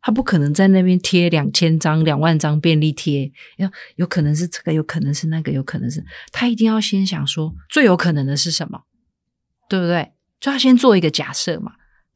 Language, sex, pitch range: Chinese, female, 155-200 Hz